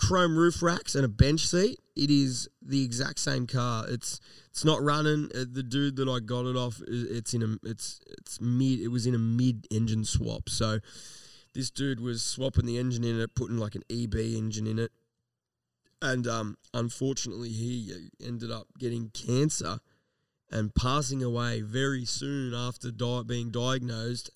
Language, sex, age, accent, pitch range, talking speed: English, male, 20-39, Australian, 115-135 Hz, 170 wpm